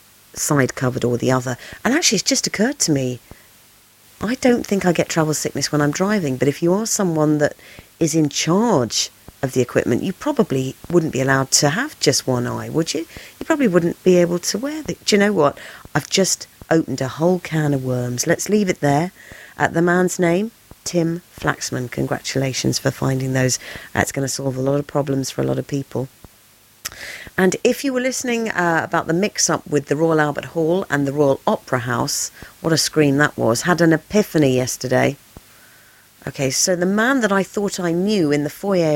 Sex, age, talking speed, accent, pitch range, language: female, 40-59, 205 wpm, British, 135-180 Hz, English